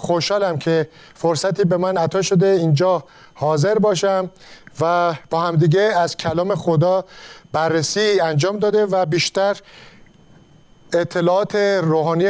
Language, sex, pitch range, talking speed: Persian, male, 165-210 Hz, 110 wpm